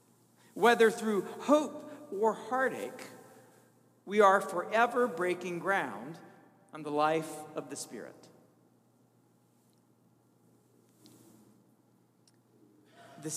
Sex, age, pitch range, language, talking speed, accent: male, 40-59, 190-250 Hz, English, 75 wpm, American